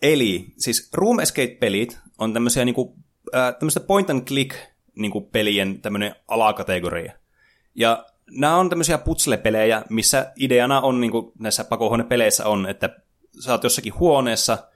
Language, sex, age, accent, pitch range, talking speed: Finnish, male, 20-39, native, 105-130 Hz, 115 wpm